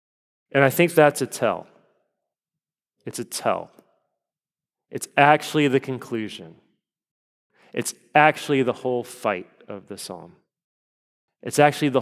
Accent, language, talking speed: American, English, 120 wpm